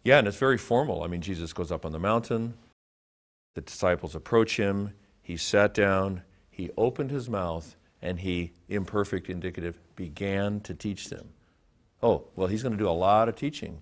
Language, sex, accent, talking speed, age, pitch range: English, male, American, 180 wpm, 50-69, 85-110 Hz